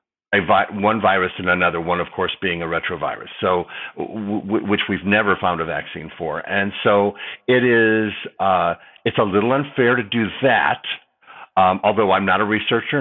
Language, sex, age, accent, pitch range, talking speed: English, male, 50-69, American, 95-120 Hz, 165 wpm